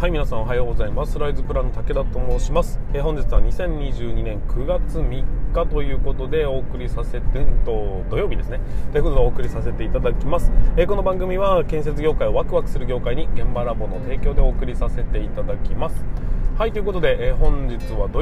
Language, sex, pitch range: Japanese, male, 120-160 Hz